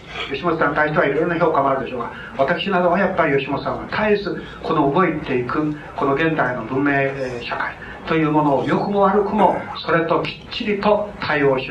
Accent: native